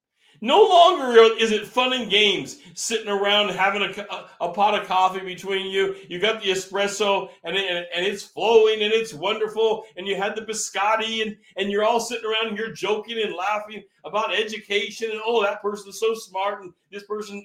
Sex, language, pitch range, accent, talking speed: male, English, 160-220 Hz, American, 195 wpm